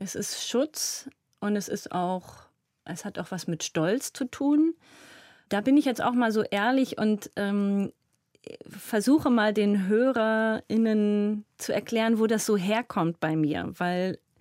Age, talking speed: 30-49, 150 wpm